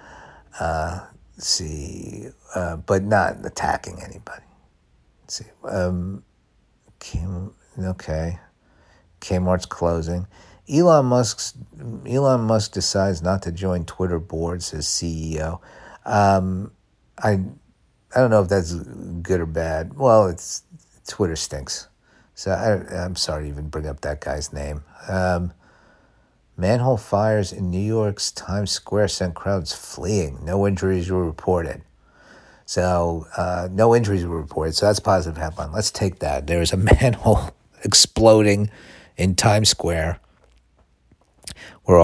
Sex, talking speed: male, 125 wpm